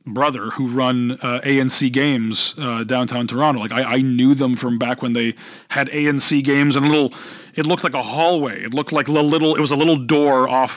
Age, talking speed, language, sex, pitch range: 30-49, 225 wpm, English, male, 130-170 Hz